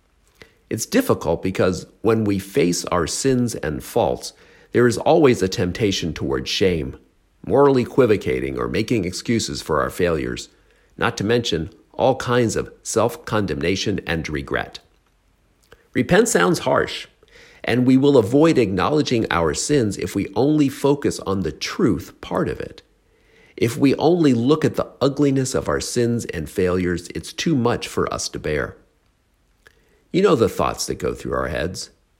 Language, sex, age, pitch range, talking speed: English, male, 50-69, 85-130 Hz, 155 wpm